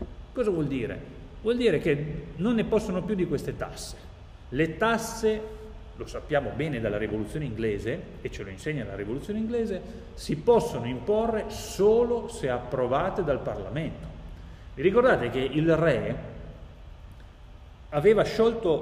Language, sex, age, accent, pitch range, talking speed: Italian, male, 40-59, native, 115-195 Hz, 135 wpm